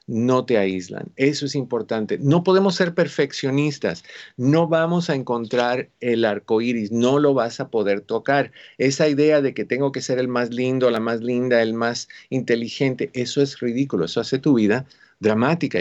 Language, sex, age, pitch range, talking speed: Spanish, male, 50-69, 120-150 Hz, 180 wpm